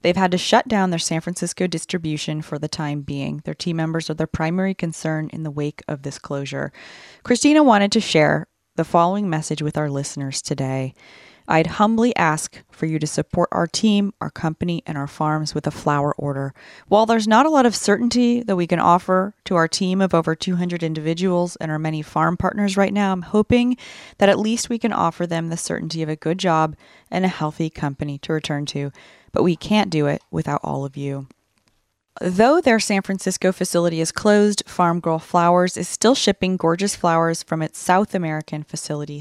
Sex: female